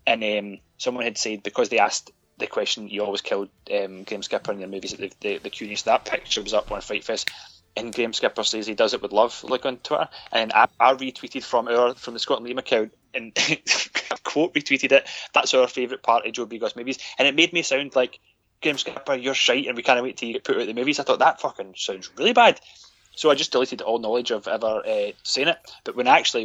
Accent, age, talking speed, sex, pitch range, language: British, 20-39, 250 wpm, male, 105-130 Hz, English